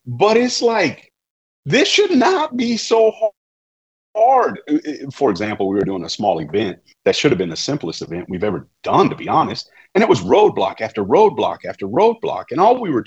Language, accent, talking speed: English, American, 195 wpm